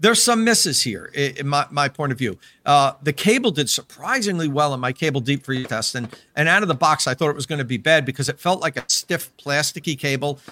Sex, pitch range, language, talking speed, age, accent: male, 135-180 Hz, English, 250 wpm, 50-69, American